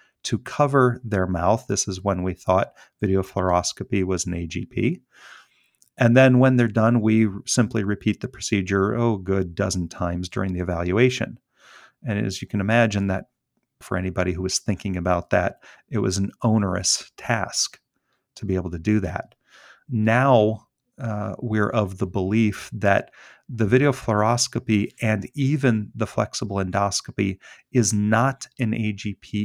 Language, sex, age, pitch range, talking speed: English, male, 40-59, 95-120 Hz, 150 wpm